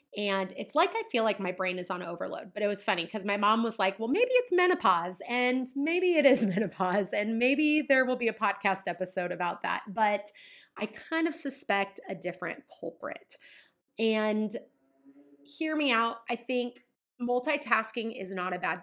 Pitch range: 185-240 Hz